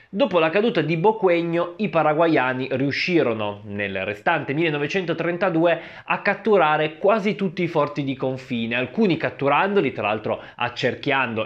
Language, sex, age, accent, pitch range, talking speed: Italian, male, 20-39, native, 125-165 Hz, 125 wpm